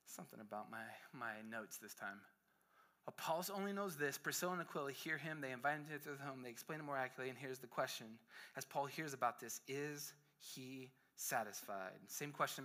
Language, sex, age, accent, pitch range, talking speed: English, male, 30-49, American, 125-160 Hz, 200 wpm